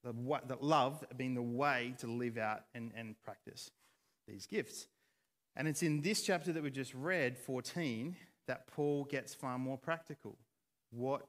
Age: 40-59